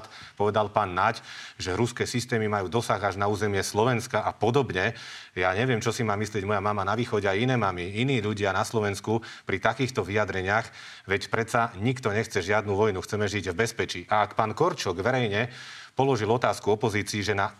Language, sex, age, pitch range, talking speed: Slovak, male, 40-59, 100-115 Hz, 185 wpm